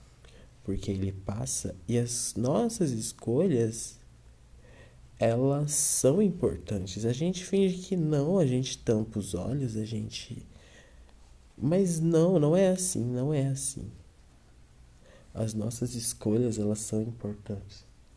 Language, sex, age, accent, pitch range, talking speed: Portuguese, male, 20-39, Brazilian, 80-130 Hz, 120 wpm